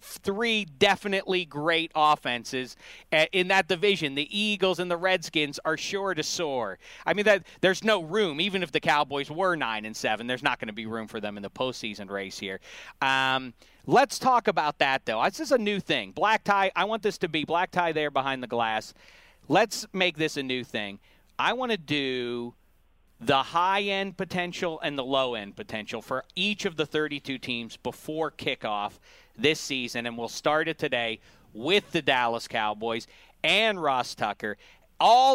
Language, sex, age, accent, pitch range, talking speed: English, male, 40-59, American, 135-205 Hz, 180 wpm